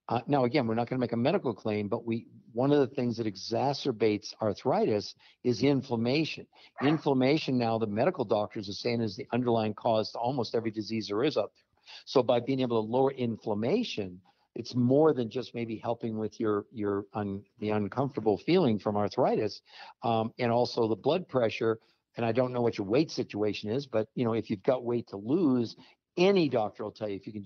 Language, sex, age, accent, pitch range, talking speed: English, male, 50-69, American, 110-130 Hz, 210 wpm